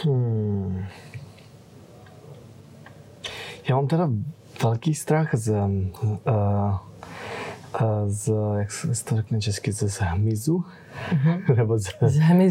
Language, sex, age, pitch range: Czech, male, 20-39, 105-120 Hz